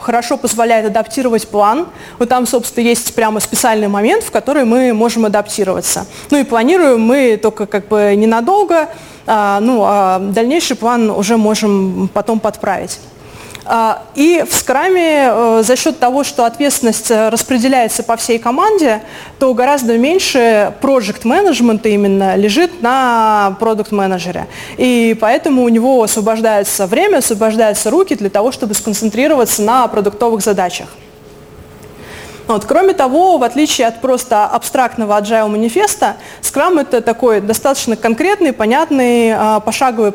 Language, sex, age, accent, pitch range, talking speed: Russian, female, 20-39, native, 220-265 Hz, 125 wpm